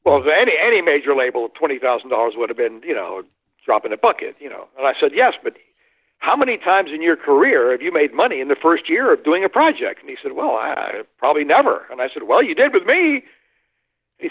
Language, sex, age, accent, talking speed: English, male, 60-79, American, 230 wpm